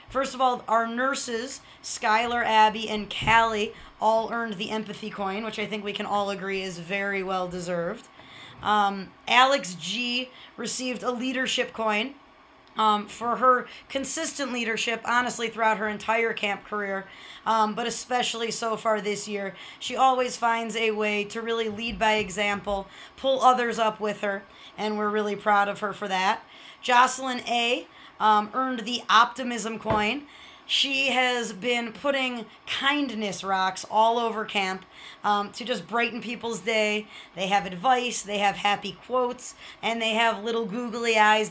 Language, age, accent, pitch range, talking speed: English, 20-39, American, 200-240 Hz, 155 wpm